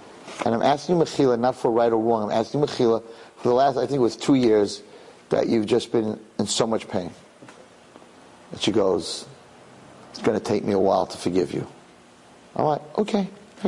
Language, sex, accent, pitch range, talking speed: English, male, American, 115-150 Hz, 205 wpm